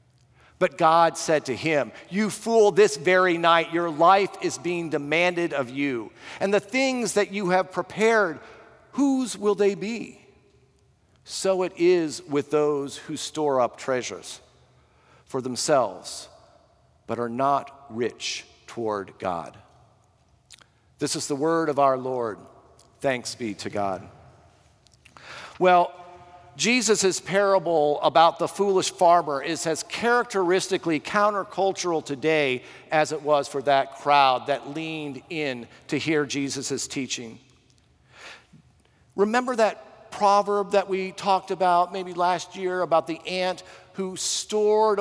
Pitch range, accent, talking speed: 150-200 Hz, American, 130 wpm